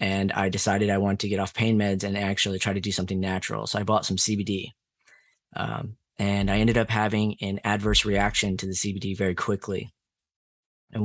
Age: 20-39